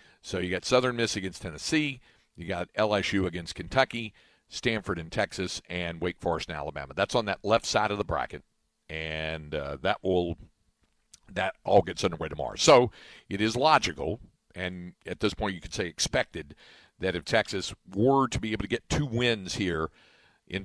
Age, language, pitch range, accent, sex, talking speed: 50-69, English, 85-110 Hz, American, male, 180 wpm